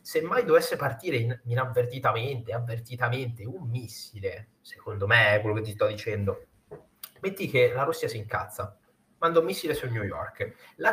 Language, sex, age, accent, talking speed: Italian, male, 30-49, native, 165 wpm